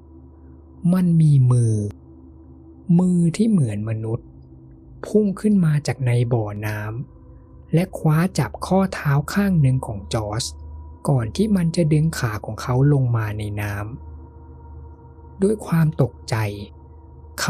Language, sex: Thai, male